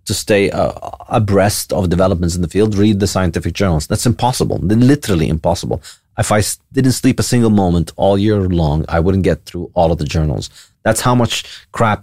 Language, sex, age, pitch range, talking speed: English, male, 30-49, 85-115 Hz, 205 wpm